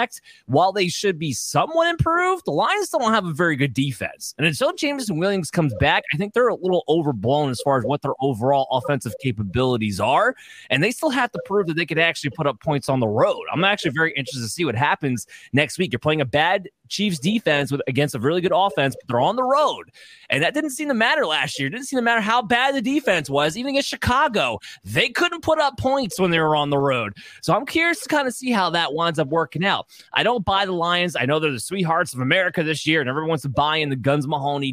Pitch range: 135-185 Hz